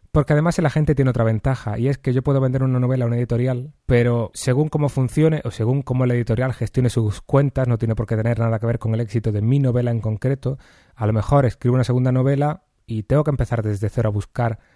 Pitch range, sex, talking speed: 110-130 Hz, male, 250 wpm